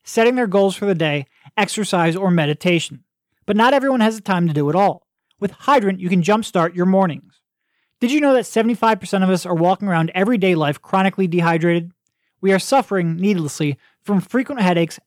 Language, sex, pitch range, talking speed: English, male, 165-215 Hz, 185 wpm